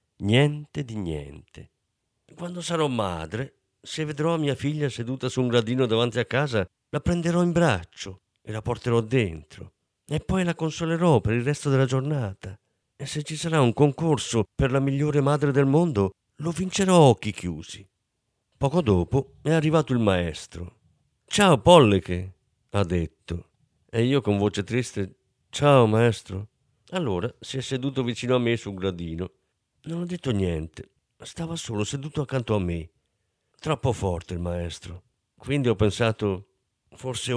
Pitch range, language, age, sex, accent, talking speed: 100-150 Hz, Italian, 50-69, male, native, 155 wpm